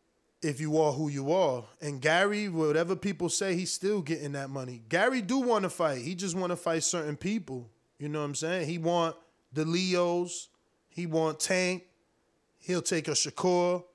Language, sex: English, male